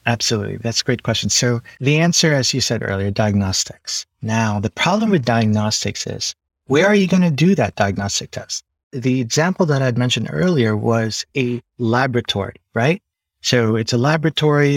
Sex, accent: male, American